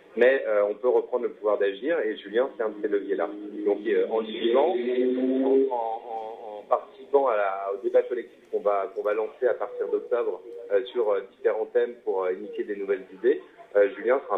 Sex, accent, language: male, French, French